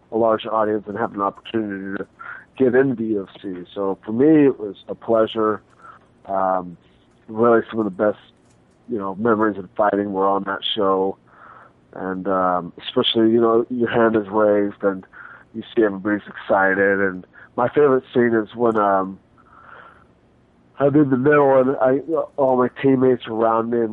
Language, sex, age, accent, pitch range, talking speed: English, male, 30-49, American, 100-115 Hz, 170 wpm